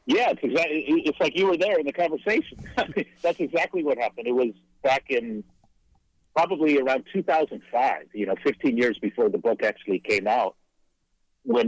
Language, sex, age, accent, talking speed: English, male, 60-79, American, 170 wpm